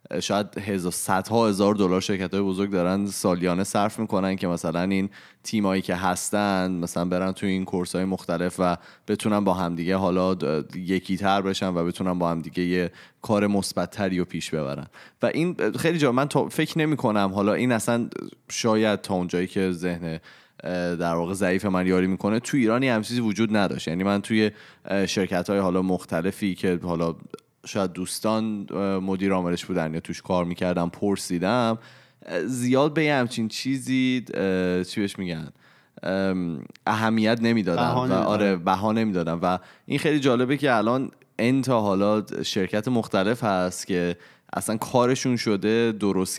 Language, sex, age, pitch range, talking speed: Persian, male, 20-39, 90-110 Hz, 155 wpm